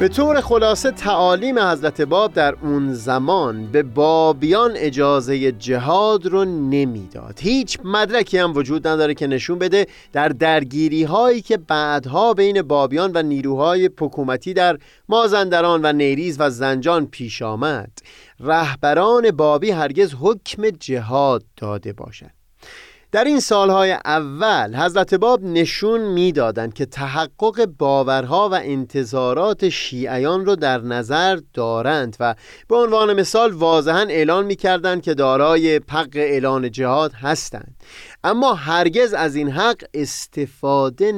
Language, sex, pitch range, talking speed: Persian, male, 140-190 Hz, 125 wpm